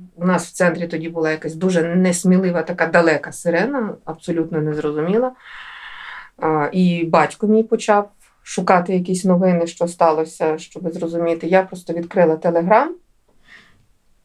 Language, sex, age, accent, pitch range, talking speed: Ukrainian, female, 30-49, native, 160-195 Hz, 120 wpm